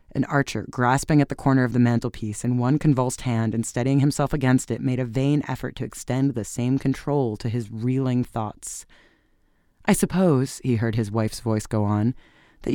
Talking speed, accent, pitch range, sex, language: 195 wpm, American, 115-135 Hz, female, English